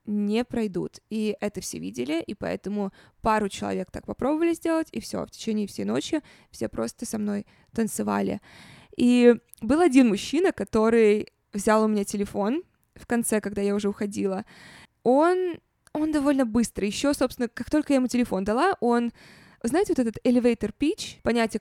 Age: 20-39